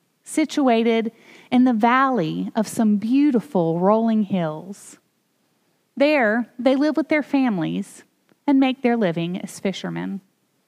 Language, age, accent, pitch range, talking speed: English, 30-49, American, 205-260 Hz, 120 wpm